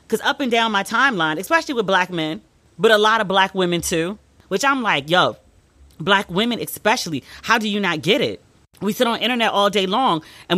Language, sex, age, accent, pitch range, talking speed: English, female, 30-49, American, 185-270 Hz, 220 wpm